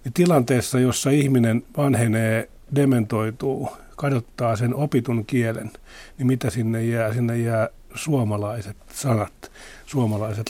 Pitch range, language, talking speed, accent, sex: 110-140 Hz, Finnish, 110 wpm, native, male